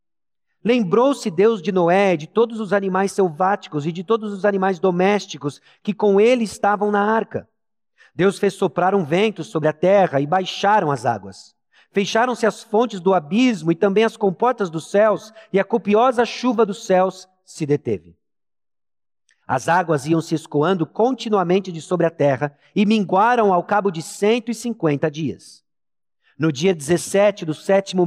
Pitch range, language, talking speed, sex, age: 155-205 Hz, Portuguese, 165 wpm, male, 50-69